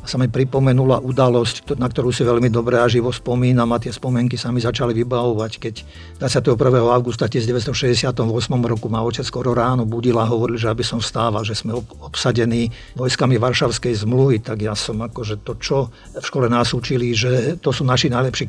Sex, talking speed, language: male, 190 wpm, Slovak